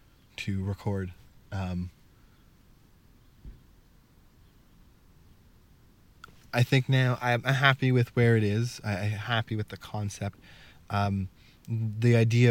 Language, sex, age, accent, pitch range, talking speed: English, male, 20-39, American, 100-120 Hz, 95 wpm